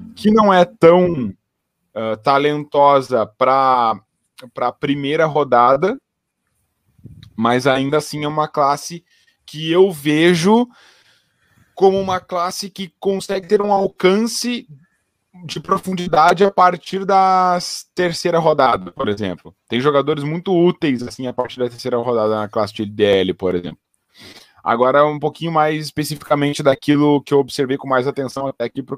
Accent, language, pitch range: Brazilian, Portuguese, 125-175 Hz